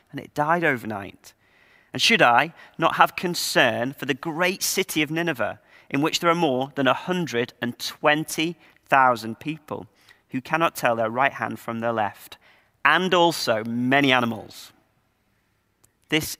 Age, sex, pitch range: 40-59, male, 120-160 Hz